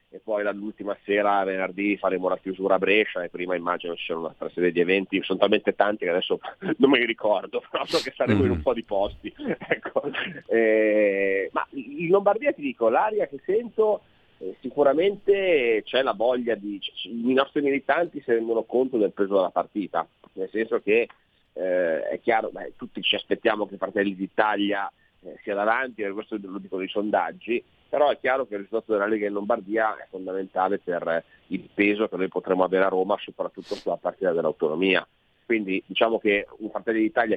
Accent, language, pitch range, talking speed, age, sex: native, Italian, 95-130 Hz, 190 wpm, 30-49, male